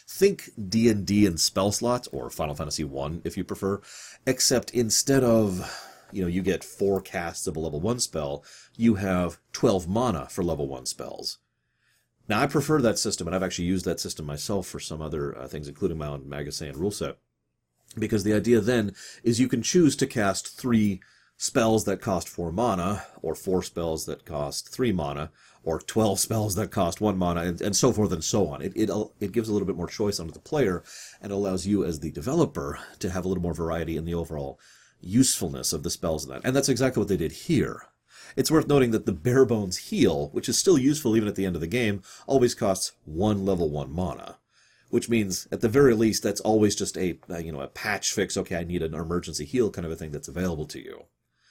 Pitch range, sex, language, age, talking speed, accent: 80-110 Hz, male, English, 40-59, 220 wpm, American